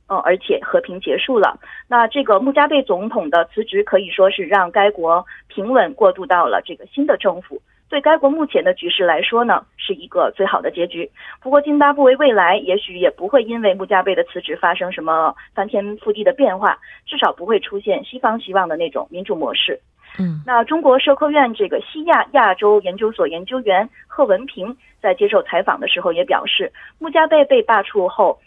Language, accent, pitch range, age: Korean, Chinese, 185-280 Hz, 30-49